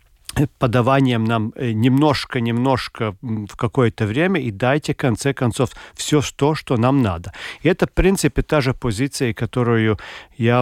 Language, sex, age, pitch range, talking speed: Russian, male, 40-59, 115-150 Hz, 140 wpm